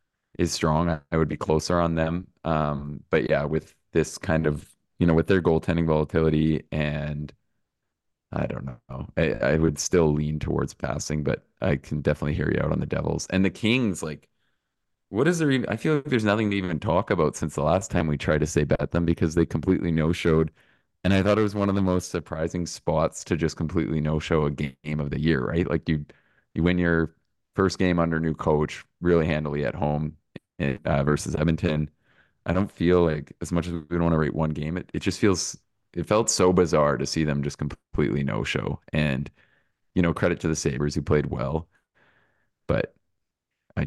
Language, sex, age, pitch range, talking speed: English, male, 20-39, 75-90 Hz, 210 wpm